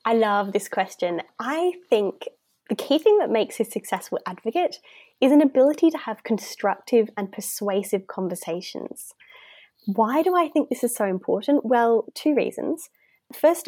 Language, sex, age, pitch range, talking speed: English, female, 10-29, 200-280 Hz, 155 wpm